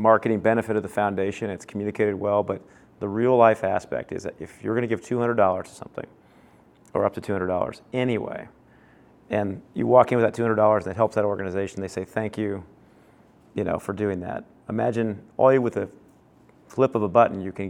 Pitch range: 100-115 Hz